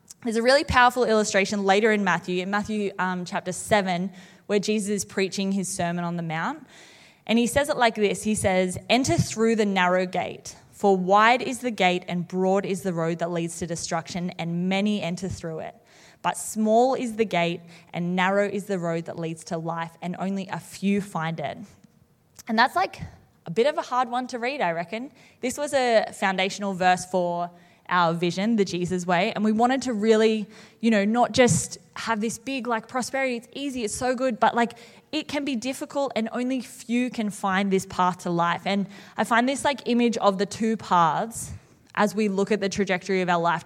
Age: 20-39